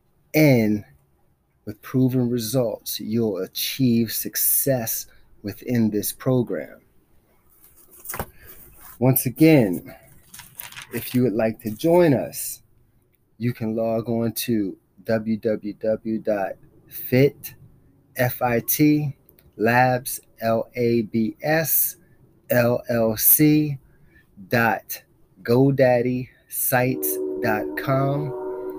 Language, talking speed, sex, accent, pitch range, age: English, 50 wpm, male, American, 115-145 Hz, 30-49